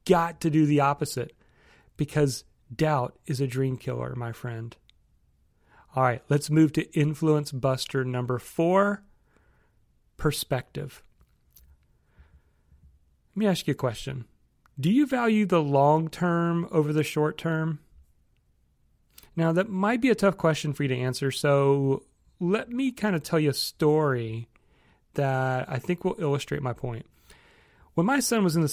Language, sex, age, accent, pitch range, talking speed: English, male, 40-59, American, 130-170 Hz, 150 wpm